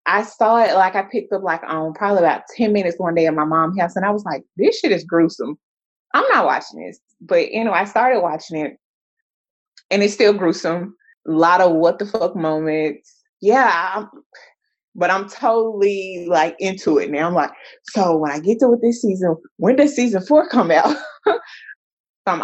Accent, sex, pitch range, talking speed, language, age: American, female, 155-220 Hz, 195 wpm, English, 20-39